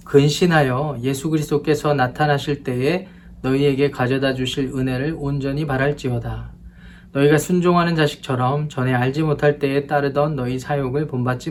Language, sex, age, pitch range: Korean, male, 20-39, 125-155 Hz